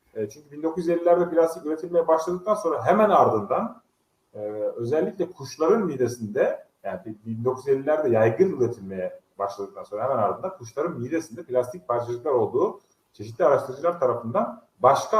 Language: Turkish